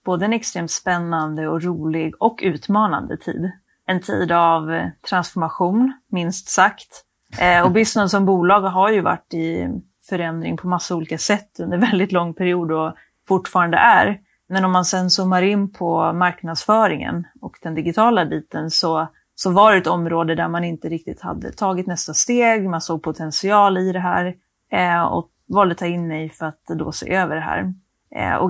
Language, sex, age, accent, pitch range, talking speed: Swedish, female, 30-49, native, 170-205 Hz, 175 wpm